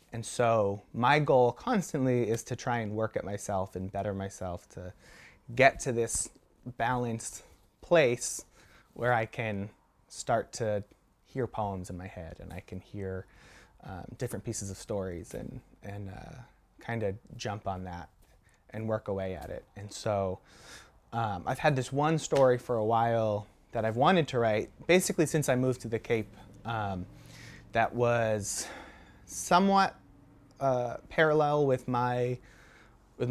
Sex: male